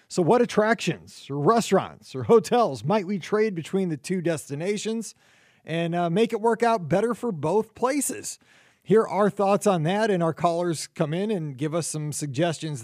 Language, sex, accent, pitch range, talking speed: English, male, American, 155-205 Hz, 185 wpm